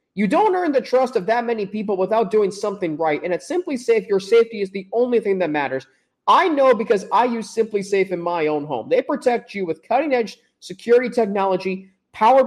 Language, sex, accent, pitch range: English, male, American, 190-235 Hz